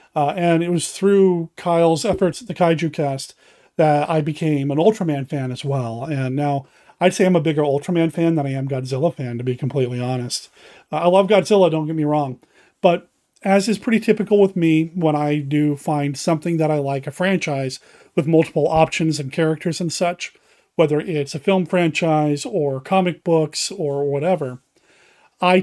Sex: male